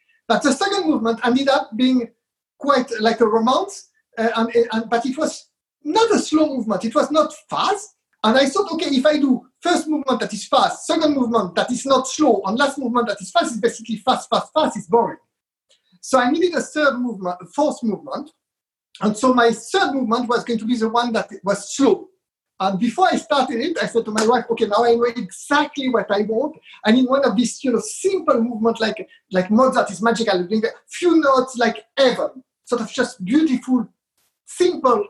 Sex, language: male, English